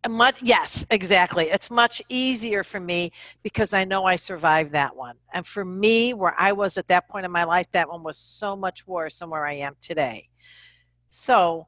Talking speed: 195 wpm